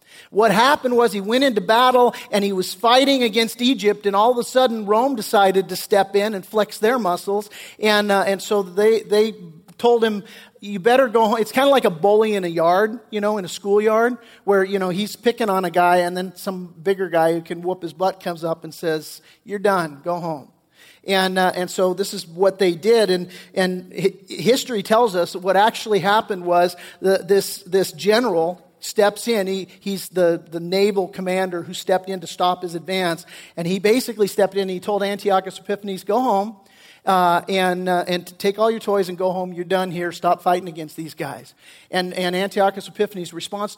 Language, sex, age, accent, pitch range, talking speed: English, male, 40-59, American, 180-210 Hz, 210 wpm